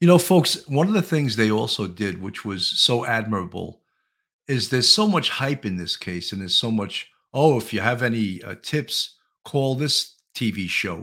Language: English